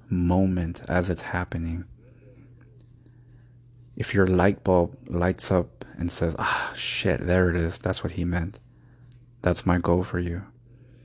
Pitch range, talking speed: 90-120 Hz, 140 wpm